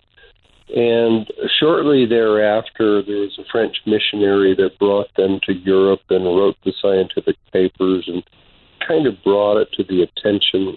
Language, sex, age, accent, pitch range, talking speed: English, male, 50-69, American, 95-115 Hz, 145 wpm